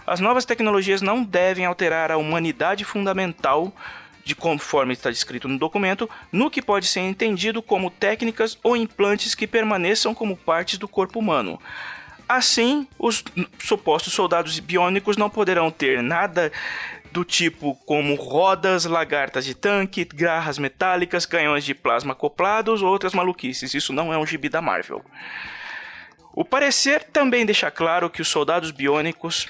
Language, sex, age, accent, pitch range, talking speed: Portuguese, male, 20-39, Brazilian, 160-220 Hz, 145 wpm